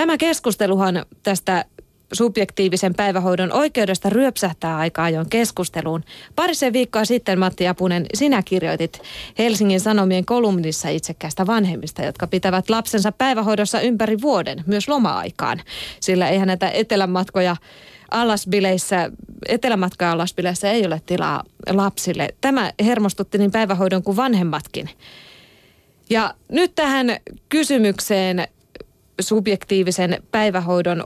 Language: Finnish